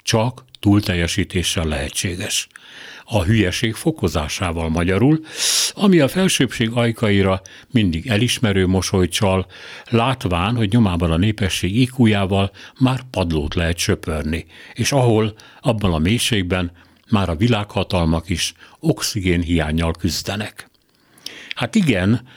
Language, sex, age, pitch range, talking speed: Hungarian, male, 60-79, 90-115 Hz, 100 wpm